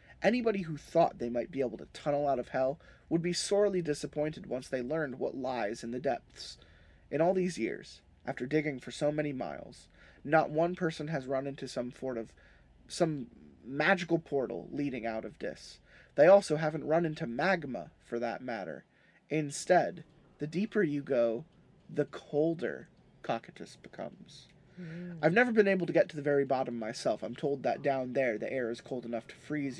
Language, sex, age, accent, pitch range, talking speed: English, male, 20-39, American, 120-160 Hz, 185 wpm